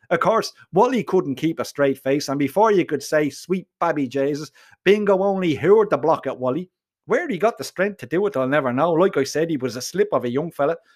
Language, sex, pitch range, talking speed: English, male, 145-195 Hz, 245 wpm